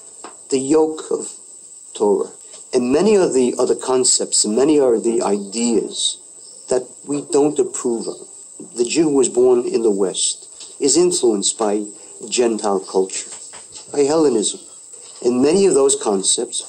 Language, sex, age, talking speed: English, male, 50-69, 145 wpm